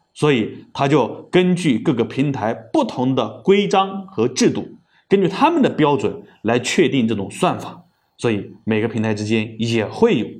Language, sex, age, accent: Chinese, male, 30-49, native